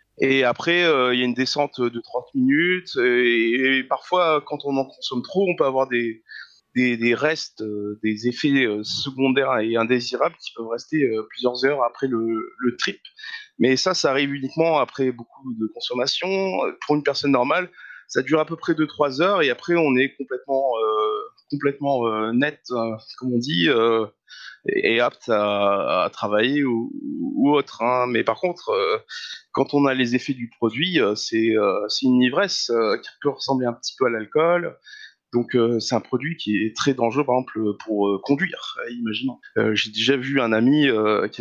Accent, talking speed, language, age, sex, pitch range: French, 190 wpm, French, 20-39, male, 115-155 Hz